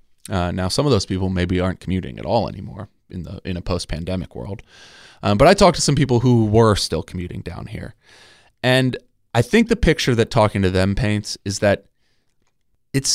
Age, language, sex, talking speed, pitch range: 20-39, English, male, 200 wpm, 90-110 Hz